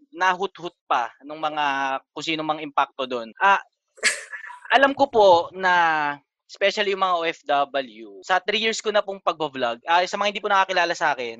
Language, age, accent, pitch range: Filipino, 20-39, native, 150-205 Hz